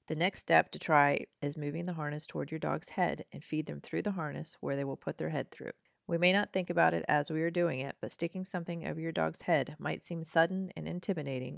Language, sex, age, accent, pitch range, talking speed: English, female, 40-59, American, 135-170 Hz, 255 wpm